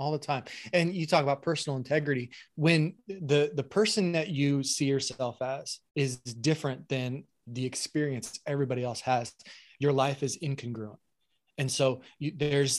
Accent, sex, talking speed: American, male, 155 wpm